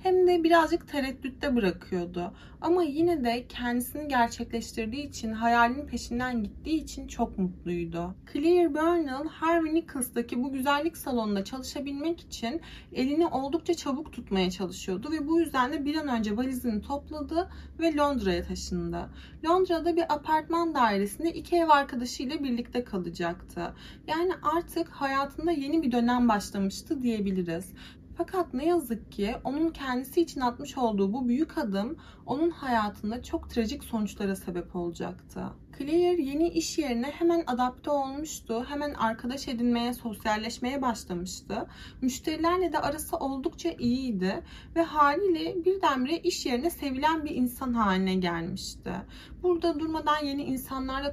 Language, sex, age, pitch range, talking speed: Turkish, female, 30-49, 225-315 Hz, 130 wpm